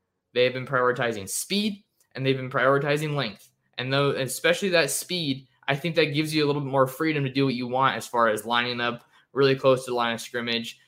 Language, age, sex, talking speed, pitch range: English, 20-39, male, 230 wpm, 115-135 Hz